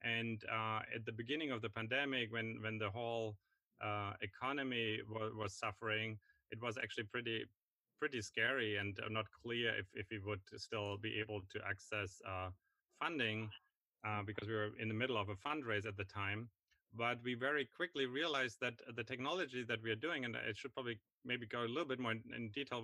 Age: 30-49